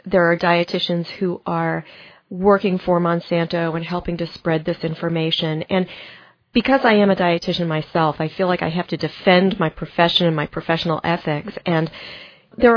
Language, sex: English, female